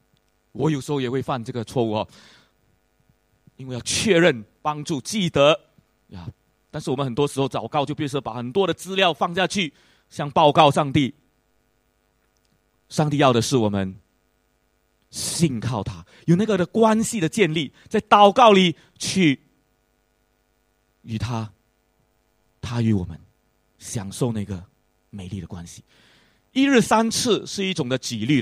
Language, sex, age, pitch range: English, male, 30-49, 110-165 Hz